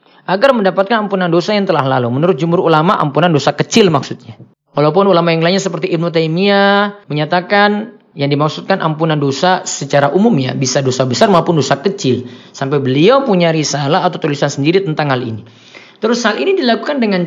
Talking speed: 175 wpm